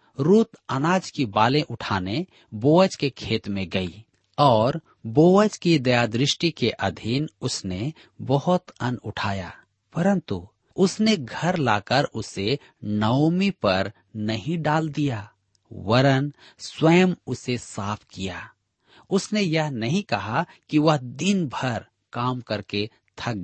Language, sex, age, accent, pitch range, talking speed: Hindi, male, 40-59, native, 105-155 Hz, 120 wpm